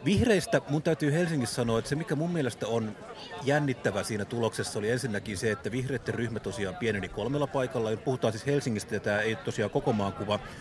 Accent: native